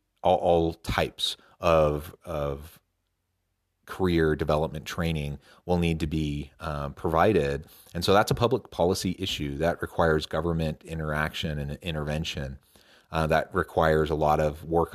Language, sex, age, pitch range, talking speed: English, male, 30-49, 75-85 Hz, 135 wpm